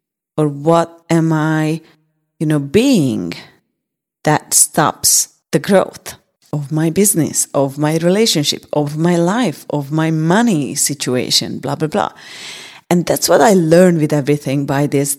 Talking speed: 140 wpm